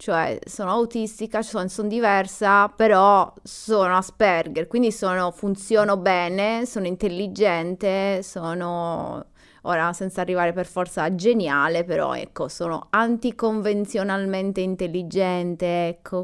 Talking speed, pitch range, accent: 105 wpm, 180-220 Hz, native